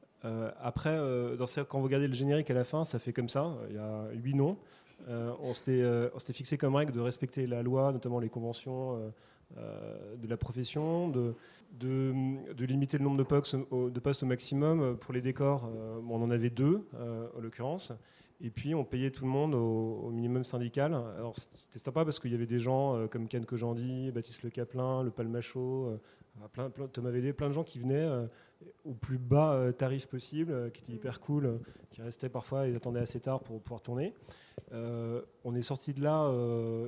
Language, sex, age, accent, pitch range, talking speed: French, male, 30-49, French, 120-135 Hz, 195 wpm